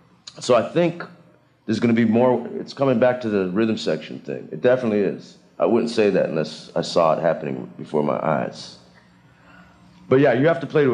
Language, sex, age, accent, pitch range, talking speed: English, male, 40-59, American, 110-145 Hz, 210 wpm